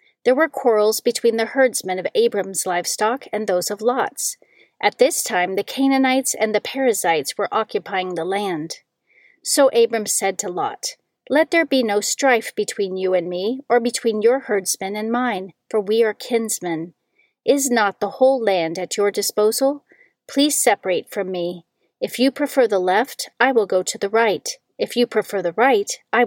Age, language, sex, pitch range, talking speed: 40-59, English, female, 195-260 Hz, 180 wpm